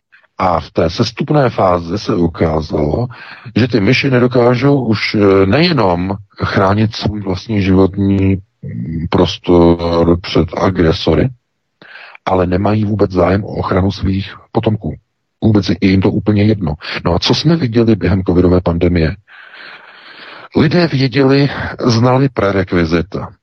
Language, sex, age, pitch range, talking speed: Czech, male, 50-69, 90-115 Hz, 120 wpm